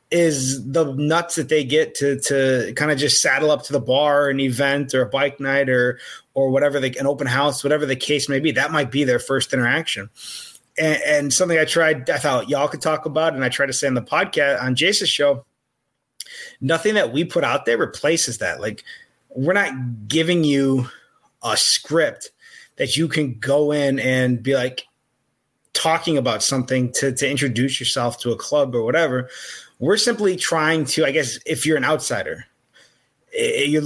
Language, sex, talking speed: English, male, 195 wpm